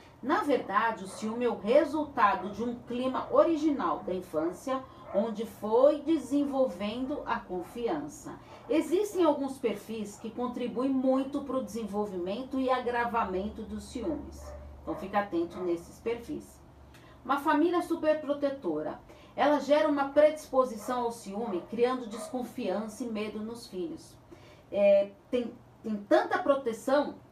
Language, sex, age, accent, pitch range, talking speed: Portuguese, female, 40-59, Brazilian, 210-285 Hz, 120 wpm